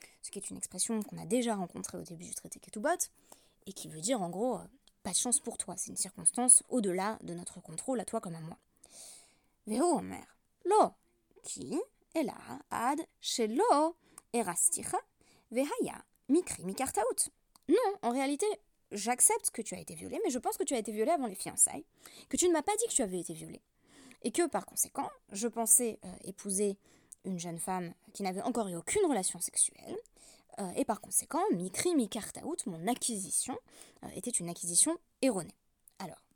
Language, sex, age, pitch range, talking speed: French, female, 20-39, 185-300 Hz, 165 wpm